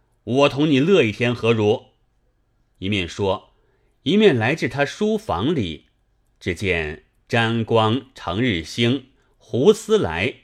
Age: 30-49